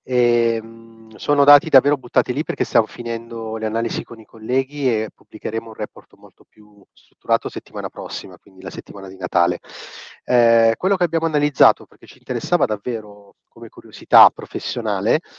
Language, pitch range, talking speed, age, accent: Italian, 110-135 Hz, 150 wpm, 30-49, native